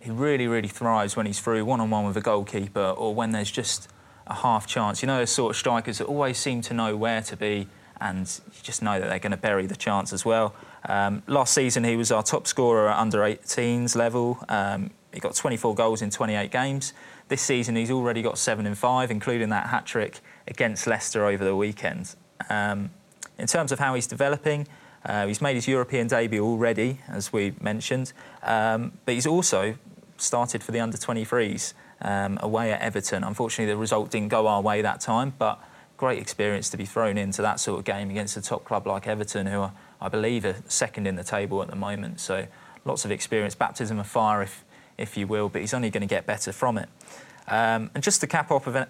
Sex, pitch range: male, 105-125 Hz